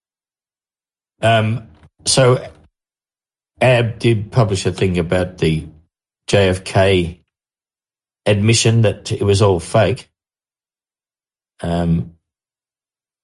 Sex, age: male, 40-59